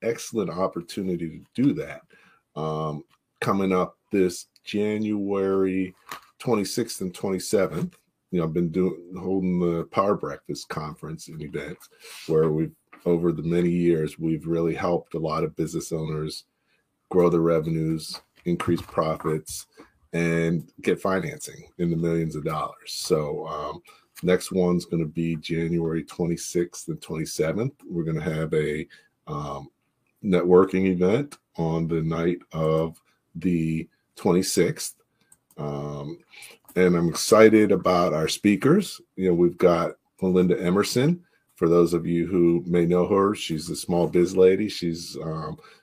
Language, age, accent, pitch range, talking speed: English, 40-59, American, 85-95 Hz, 135 wpm